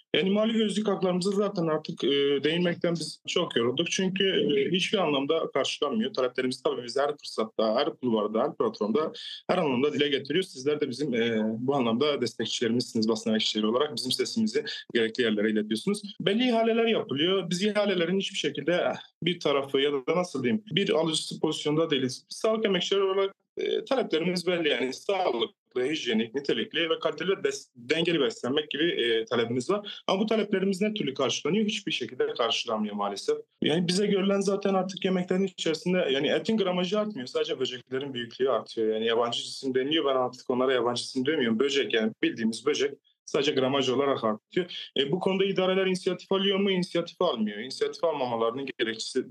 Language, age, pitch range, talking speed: Turkish, 30-49, 130-200 Hz, 165 wpm